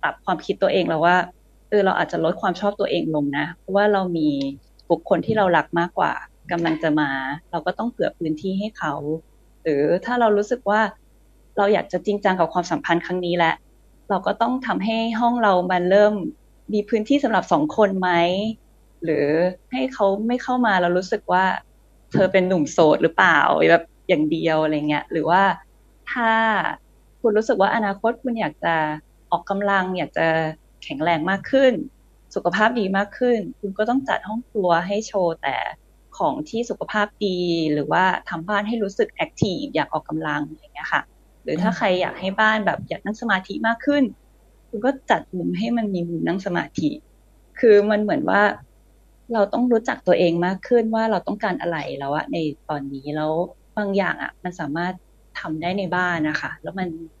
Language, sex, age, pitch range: English, female, 20-39, 170-220 Hz